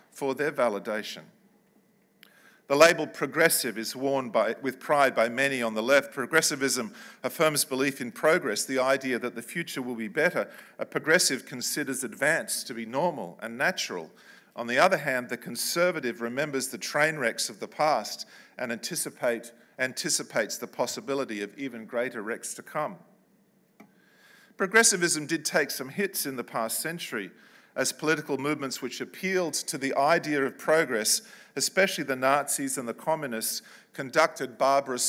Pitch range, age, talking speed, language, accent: 130-170 Hz, 50-69, 150 wpm, English, Australian